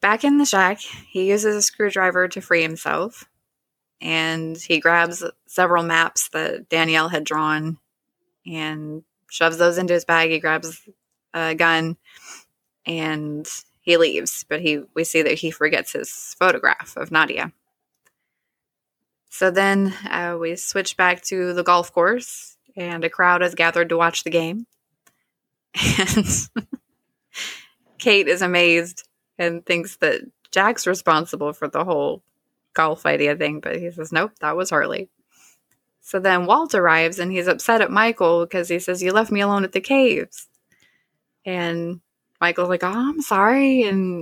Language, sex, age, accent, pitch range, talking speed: English, female, 20-39, American, 165-195 Hz, 150 wpm